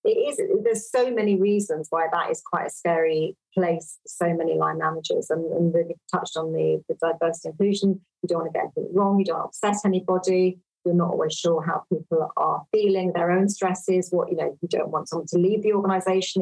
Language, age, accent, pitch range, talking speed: English, 40-59, British, 175-215 Hz, 215 wpm